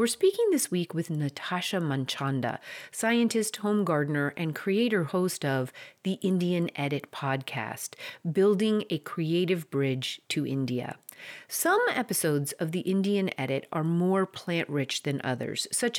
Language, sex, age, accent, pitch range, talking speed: English, female, 40-59, American, 140-200 Hz, 135 wpm